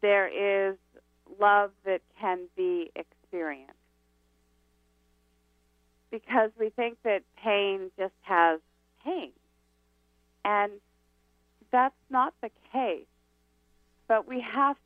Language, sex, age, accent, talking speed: English, female, 40-59, American, 95 wpm